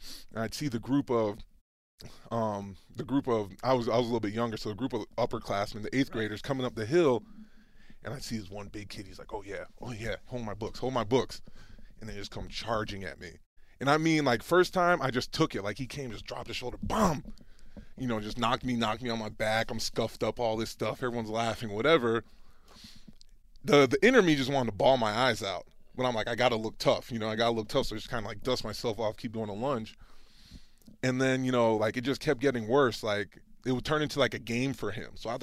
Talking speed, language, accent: 260 wpm, English, American